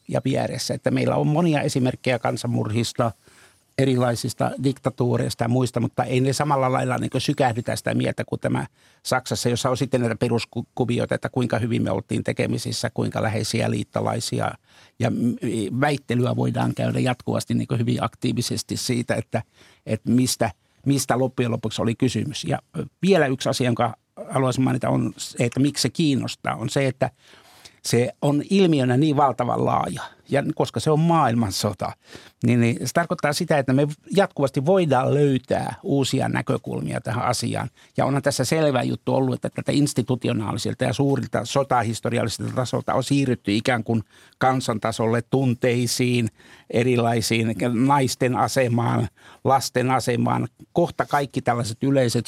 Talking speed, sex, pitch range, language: 140 wpm, male, 115-135 Hz, Finnish